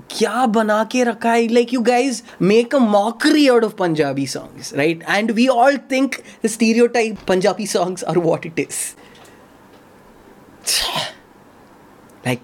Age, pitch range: 20-39, 140-220 Hz